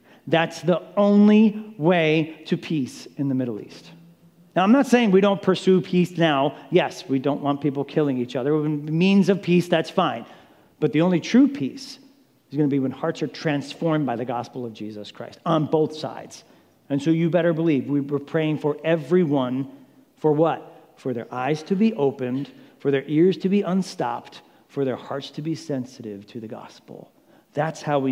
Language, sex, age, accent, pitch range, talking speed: English, male, 40-59, American, 130-165 Hz, 190 wpm